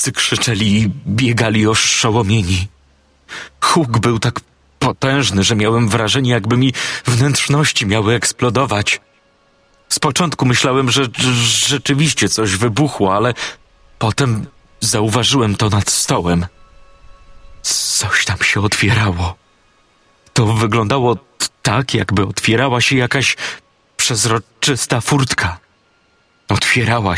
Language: Polish